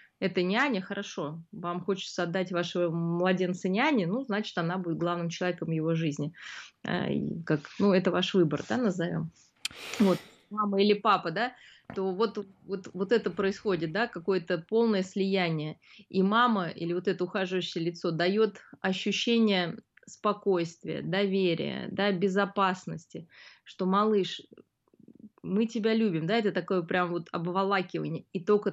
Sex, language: female, Russian